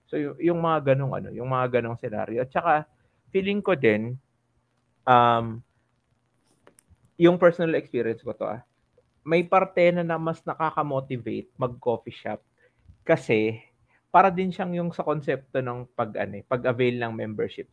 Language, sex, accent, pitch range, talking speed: Filipino, male, native, 115-150 Hz, 145 wpm